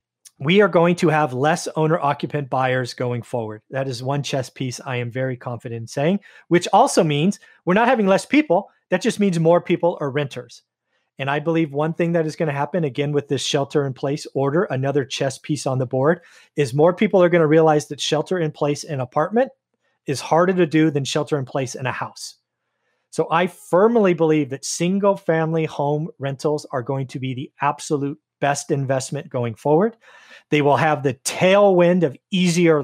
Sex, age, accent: male, 30-49, American